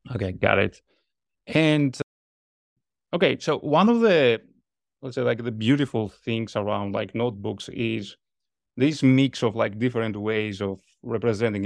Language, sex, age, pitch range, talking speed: English, male, 30-49, 100-130 Hz, 145 wpm